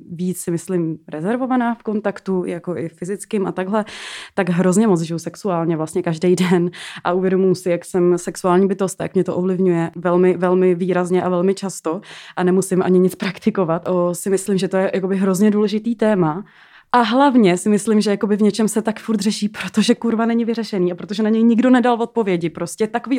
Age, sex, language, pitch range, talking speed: 20-39, female, Czech, 185-220 Hz, 200 wpm